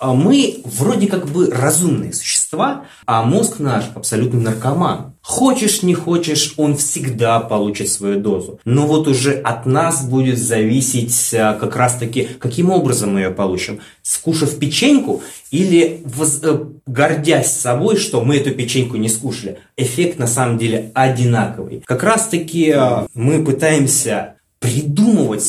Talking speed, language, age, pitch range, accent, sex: 145 wpm, Russian, 20-39, 115-165 Hz, native, male